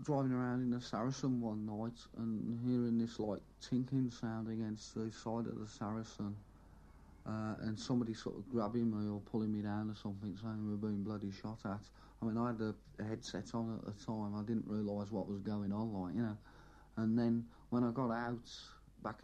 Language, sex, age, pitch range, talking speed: English, male, 50-69, 105-115 Hz, 205 wpm